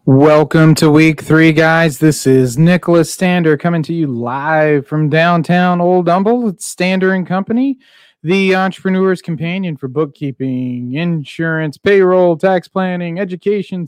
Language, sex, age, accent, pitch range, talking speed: English, male, 30-49, American, 155-195 Hz, 135 wpm